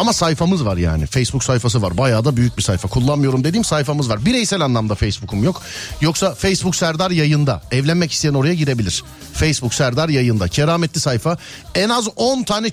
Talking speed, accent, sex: 175 wpm, native, male